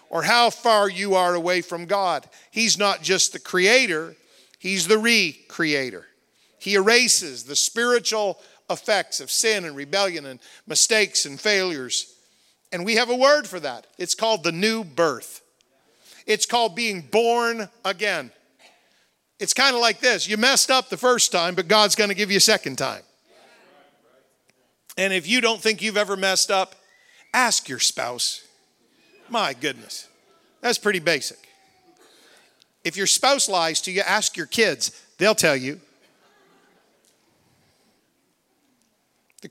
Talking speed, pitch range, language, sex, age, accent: 145 wpm, 180-235 Hz, English, male, 50-69, American